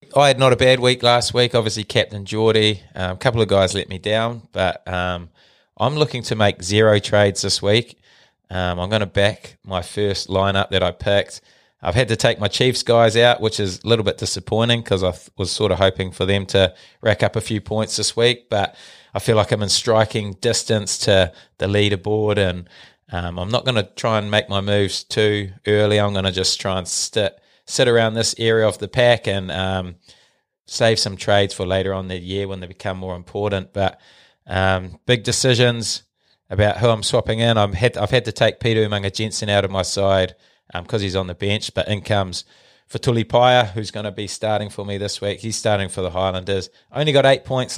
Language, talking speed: English, 220 wpm